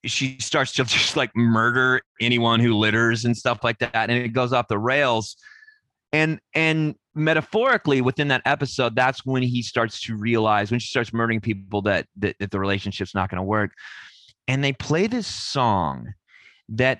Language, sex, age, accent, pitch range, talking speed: English, male, 30-49, American, 110-135 Hz, 180 wpm